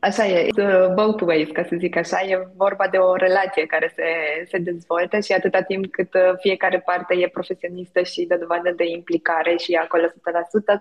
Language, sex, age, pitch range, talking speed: Romanian, female, 20-39, 170-195 Hz, 195 wpm